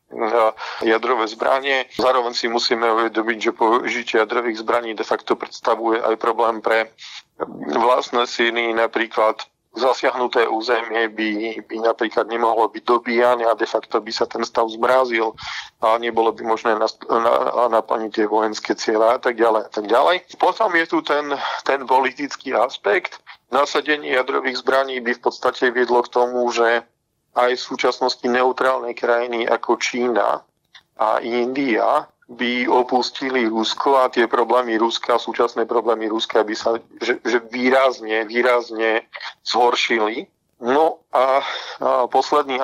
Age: 40-59